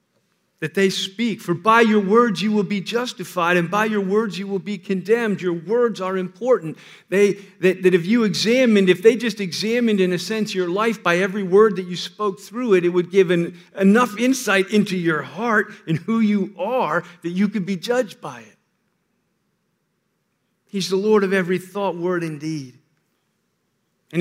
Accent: American